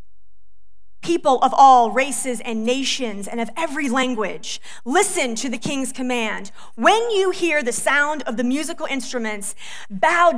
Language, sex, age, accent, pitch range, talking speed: English, female, 30-49, American, 205-270 Hz, 145 wpm